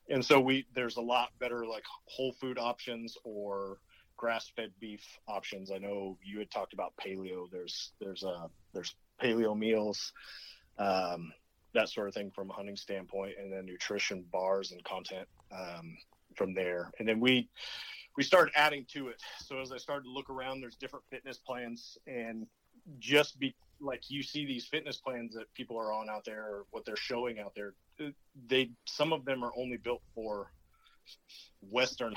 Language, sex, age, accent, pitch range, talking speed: English, male, 30-49, American, 100-130 Hz, 175 wpm